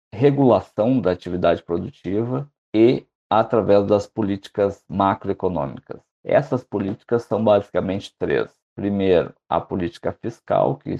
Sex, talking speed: male, 105 wpm